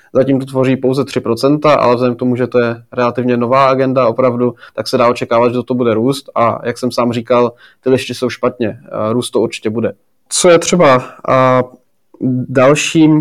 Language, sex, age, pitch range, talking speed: Czech, male, 20-39, 130-155 Hz, 190 wpm